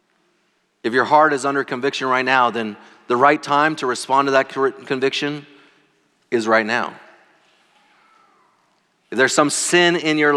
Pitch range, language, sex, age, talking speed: 140-180 Hz, English, male, 30-49, 150 wpm